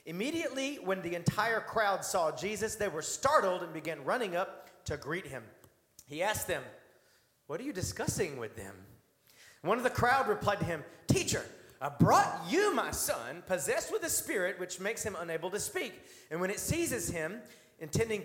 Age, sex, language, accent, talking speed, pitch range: 40-59, male, English, American, 180 wpm, 140-215 Hz